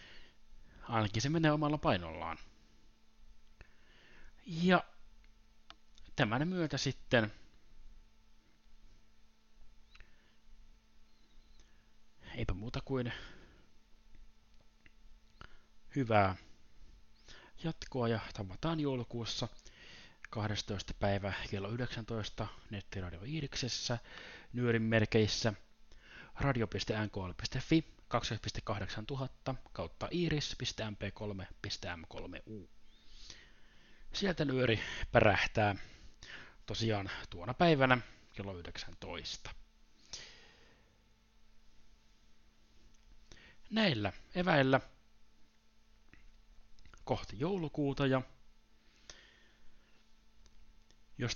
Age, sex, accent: 30-49, male, native